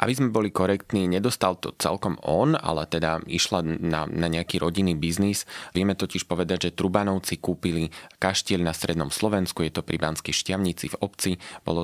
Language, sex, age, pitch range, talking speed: Slovak, male, 20-39, 80-95 Hz, 170 wpm